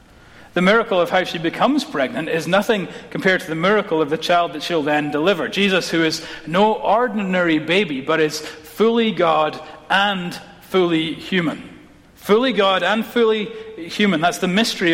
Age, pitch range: 30-49, 155-190 Hz